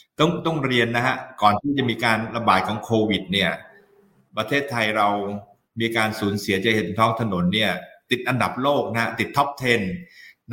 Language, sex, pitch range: Thai, male, 100-120 Hz